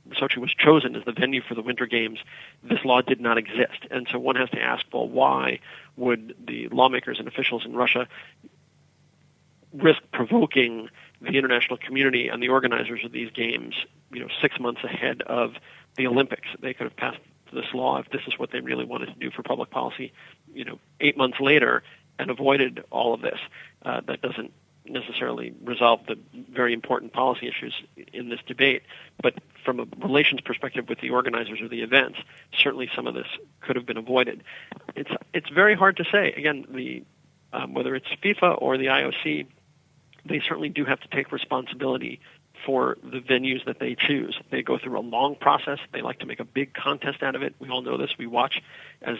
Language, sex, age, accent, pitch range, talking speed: English, male, 40-59, American, 120-145 Hz, 195 wpm